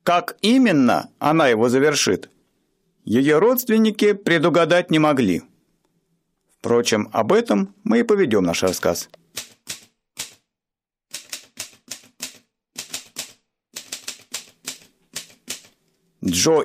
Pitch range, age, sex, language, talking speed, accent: 155-210 Hz, 50-69, male, Russian, 70 wpm, native